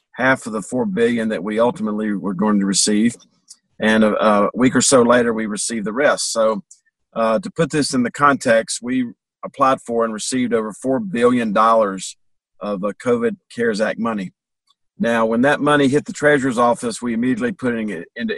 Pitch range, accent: 110-150 Hz, American